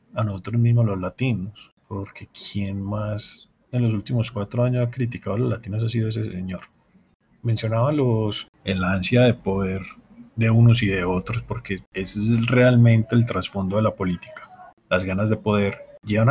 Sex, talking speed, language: male, 175 wpm, Spanish